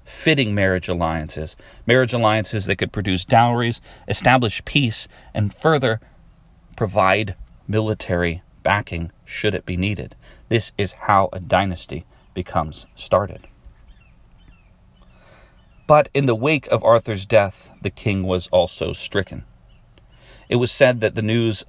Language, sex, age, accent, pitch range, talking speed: English, male, 40-59, American, 90-115 Hz, 125 wpm